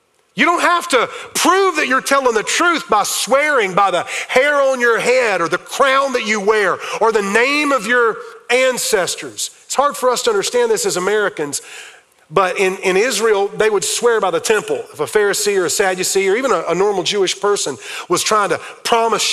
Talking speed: 205 wpm